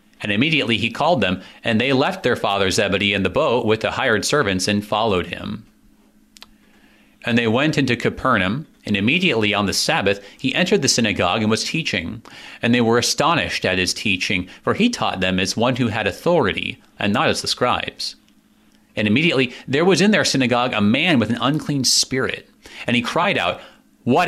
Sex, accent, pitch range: male, American, 105-140 Hz